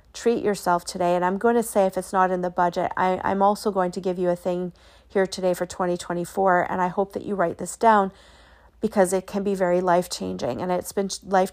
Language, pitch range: English, 180-205 Hz